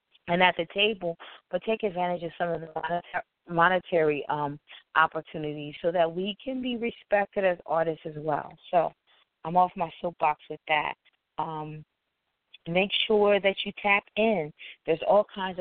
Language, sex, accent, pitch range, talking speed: English, female, American, 160-195 Hz, 160 wpm